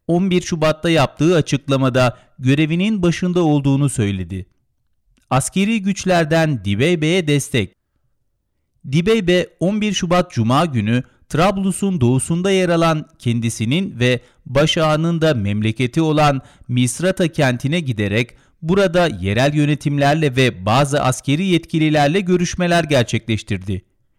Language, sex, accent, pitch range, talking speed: Turkish, male, native, 125-175 Hz, 95 wpm